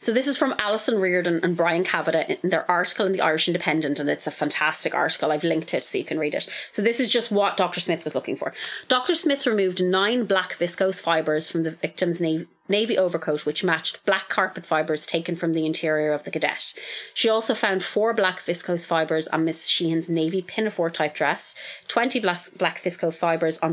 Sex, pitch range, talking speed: female, 160-200 Hz, 210 wpm